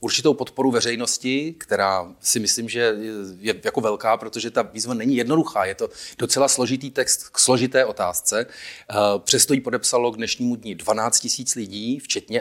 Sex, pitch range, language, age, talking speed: male, 110-135 Hz, Czech, 40-59, 160 wpm